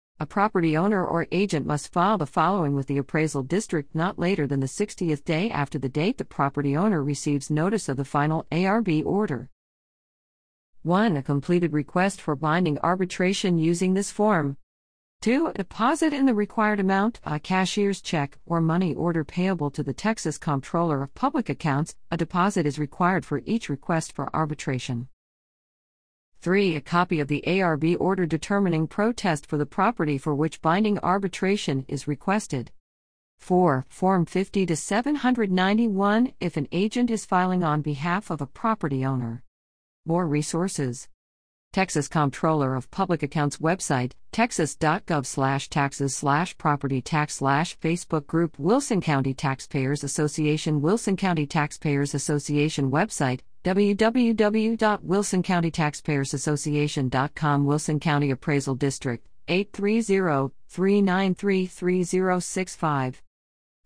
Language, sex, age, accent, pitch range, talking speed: English, female, 50-69, American, 145-190 Hz, 130 wpm